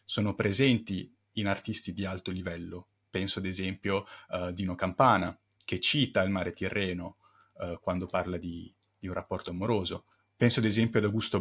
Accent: native